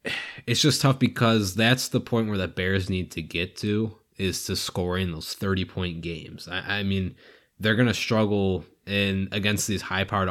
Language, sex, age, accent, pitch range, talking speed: English, male, 20-39, American, 90-110 Hz, 180 wpm